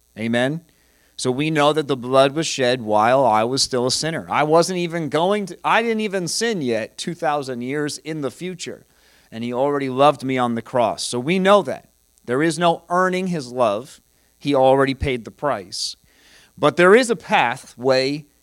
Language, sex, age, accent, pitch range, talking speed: English, male, 40-59, American, 130-170 Hz, 190 wpm